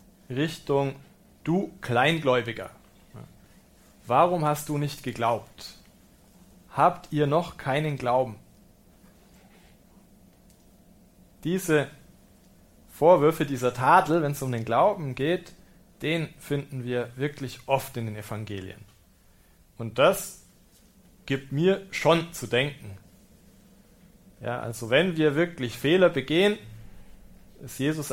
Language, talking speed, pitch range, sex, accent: German, 100 wpm, 125-175 Hz, male, German